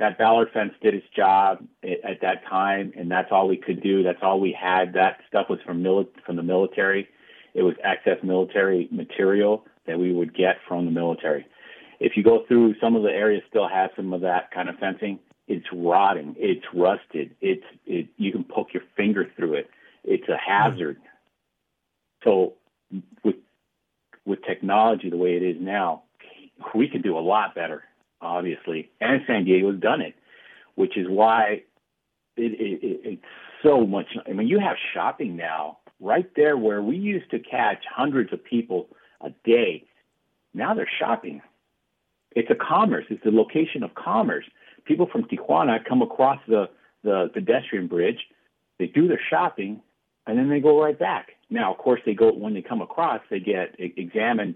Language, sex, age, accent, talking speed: English, male, 40-59, American, 175 wpm